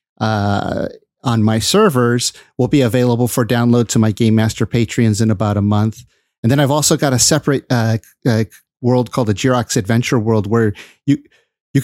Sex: male